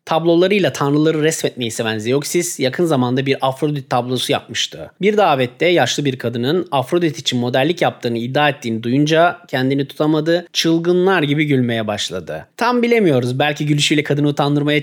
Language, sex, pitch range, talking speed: Turkish, male, 120-160 Hz, 140 wpm